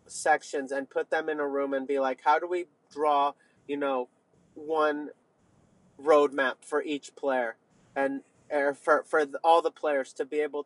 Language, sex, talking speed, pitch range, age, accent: English, male, 170 wpm, 145-170 Hz, 30-49, American